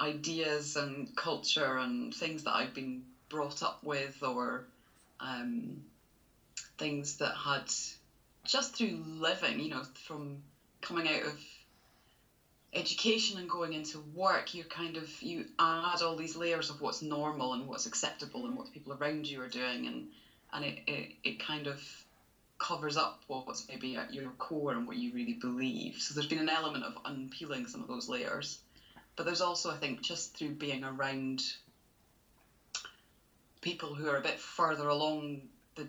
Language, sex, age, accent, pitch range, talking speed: English, female, 20-39, British, 135-165 Hz, 165 wpm